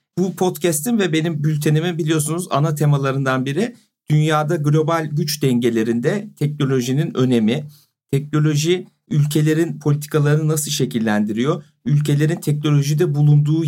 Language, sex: Turkish, male